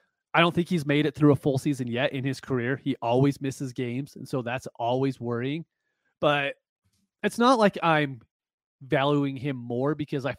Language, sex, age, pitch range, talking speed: English, male, 30-49, 120-155 Hz, 190 wpm